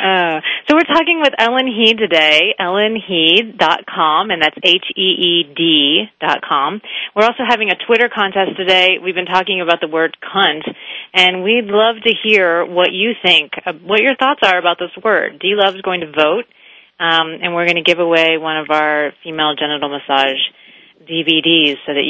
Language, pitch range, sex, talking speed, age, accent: English, 155-205 Hz, female, 170 wpm, 30-49, American